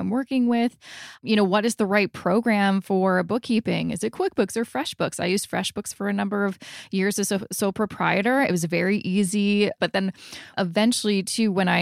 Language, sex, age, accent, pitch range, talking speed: English, female, 20-39, American, 190-240 Hz, 200 wpm